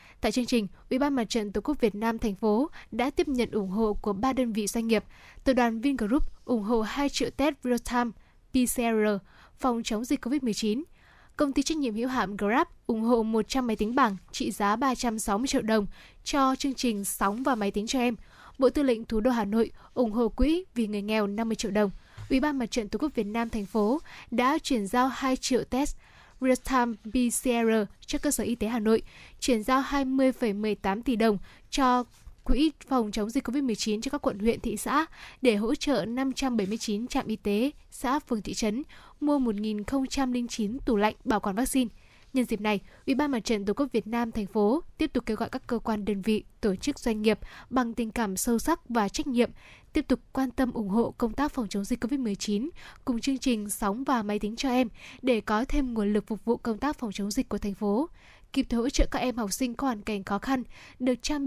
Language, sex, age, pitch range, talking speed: Vietnamese, female, 10-29, 215-265 Hz, 230 wpm